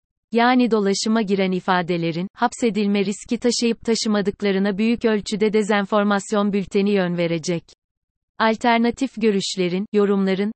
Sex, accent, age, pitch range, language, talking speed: female, native, 30-49, 185-220 Hz, Turkish, 95 wpm